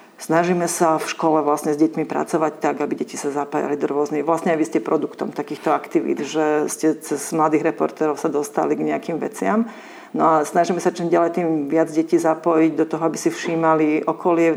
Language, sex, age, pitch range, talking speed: Slovak, female, 40-59, 155-170 Hz, 200 wpm